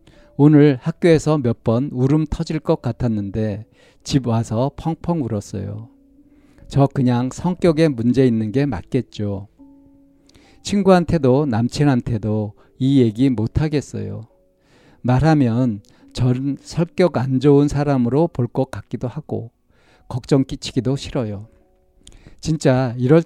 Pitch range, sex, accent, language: 115-150 Hz, male, native, Korean